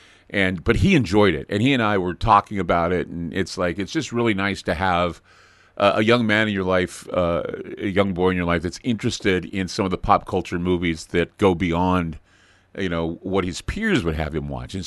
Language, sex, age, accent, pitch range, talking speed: English, male, 40-59, American, 85-105 Hz, 235 wpm